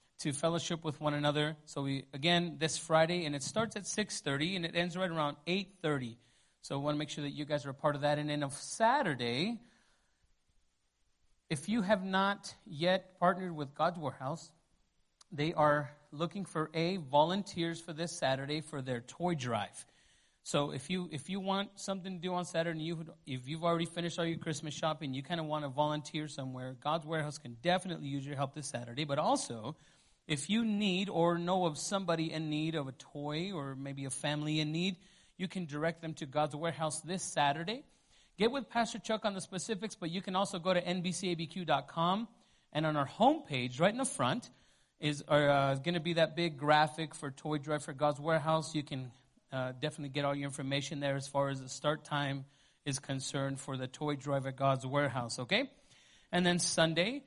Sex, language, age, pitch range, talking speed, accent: male, English, 30-49, 145-180 Hz, 200 wpm, American